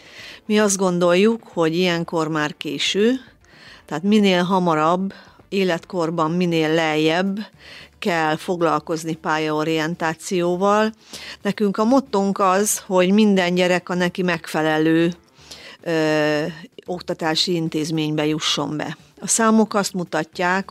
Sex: female